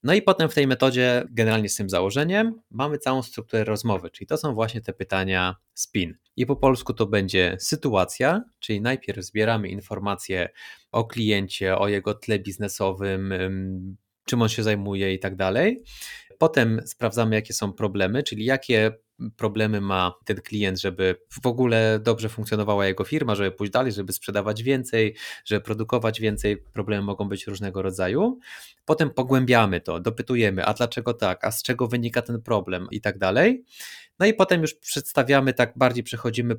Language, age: Polish, 20-39